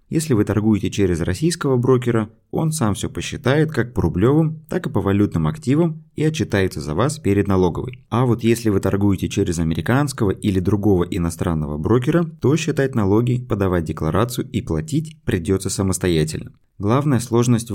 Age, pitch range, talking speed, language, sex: 30-49, 95-125 Hz, 155 wpm, Russian, male